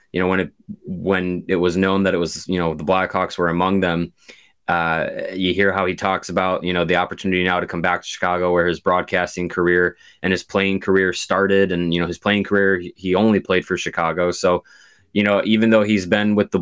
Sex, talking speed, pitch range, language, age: male, 230 wpm, 90-100 Hz, English, 20-39